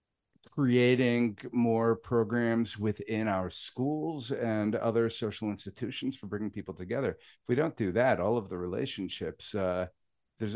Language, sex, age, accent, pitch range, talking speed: English, male, 50-69, American, 90-120 Hz, 140 wpm